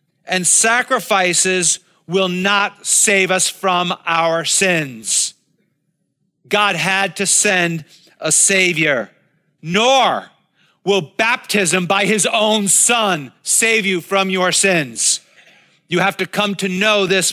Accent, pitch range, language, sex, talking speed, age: American, 140-185 Hz, English, male, 120 wpm, 40-59